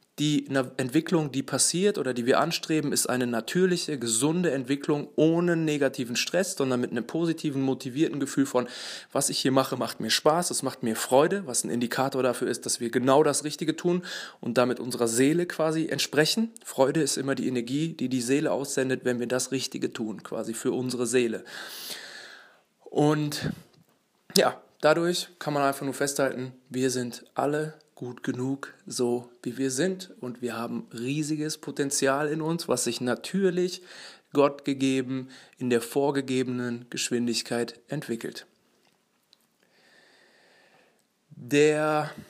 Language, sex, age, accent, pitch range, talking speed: German, male, 20-39, German, 125-155 Hz, 150 wpm